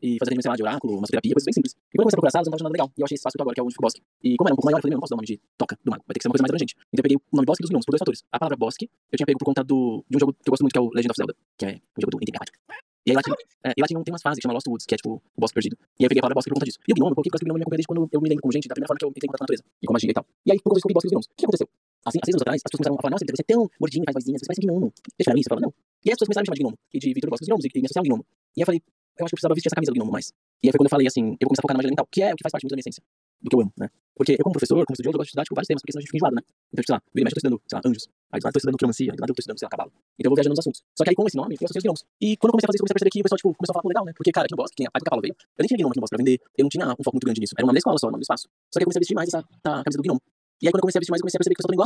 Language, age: Portuguese, 20-39